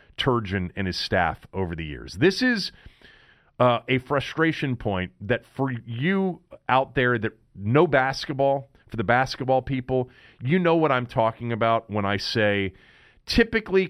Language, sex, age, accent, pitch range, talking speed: English, male, 40-59, American, 115-165 Hz, 150 wpm